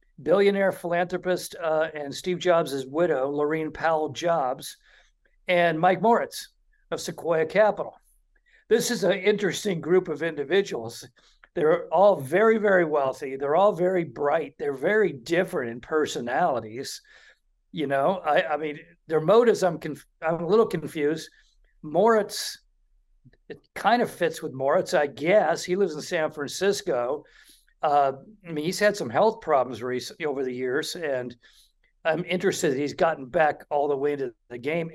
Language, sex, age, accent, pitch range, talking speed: English, male, 50-69, American, 150-190 Hz, 155 wpm